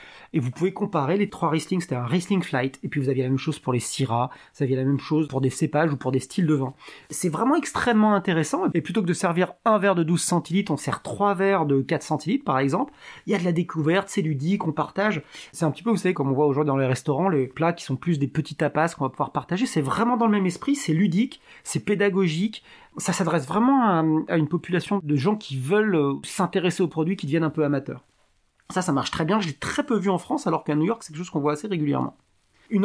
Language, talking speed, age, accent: French, 265 wpm, 30-49, French